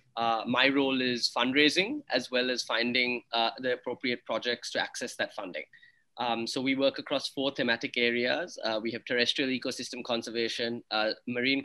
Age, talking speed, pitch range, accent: 20-39, 170 wpm, 115-125 Hz, Indian